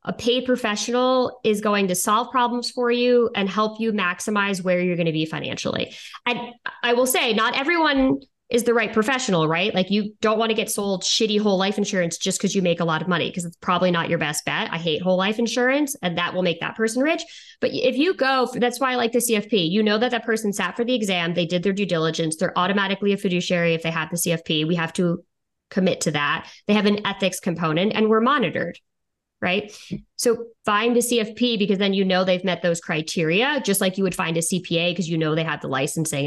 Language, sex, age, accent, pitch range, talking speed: English, female, 20-39, American, 180-235 Hz, 235 wpm